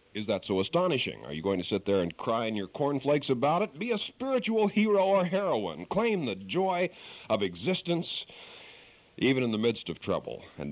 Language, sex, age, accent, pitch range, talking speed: English, male, 50-69, American, 95-150 Hz, 195 wpm